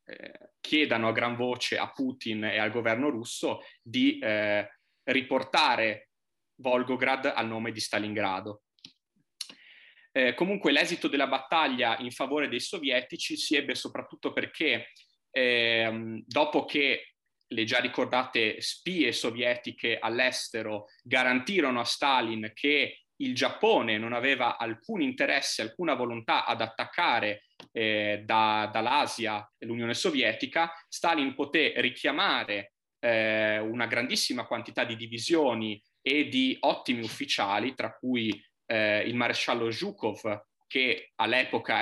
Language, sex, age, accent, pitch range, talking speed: Italian, male, 20-39, native, 110-130 Hz, 115 wpm